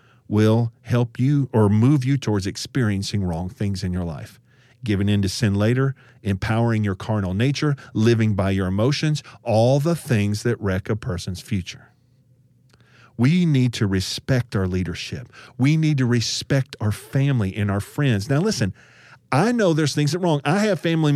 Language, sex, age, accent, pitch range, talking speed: English, male, 40-59, American, 110-145 Hz, 175 wpm